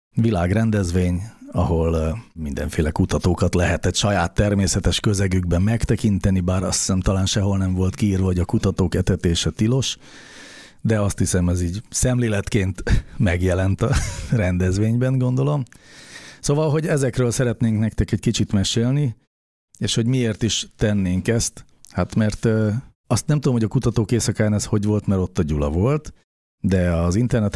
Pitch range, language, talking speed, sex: 90-115 Hz, Hungarian, 145 wpm, male